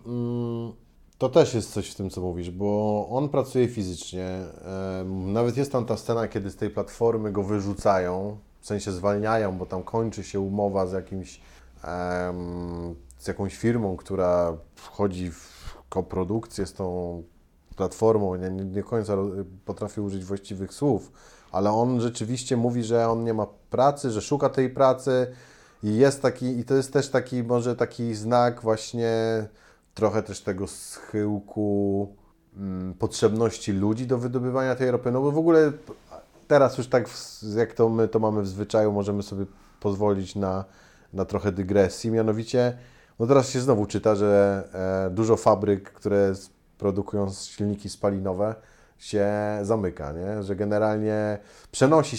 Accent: native